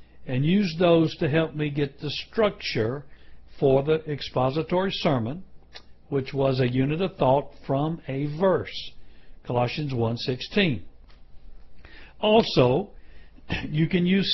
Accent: American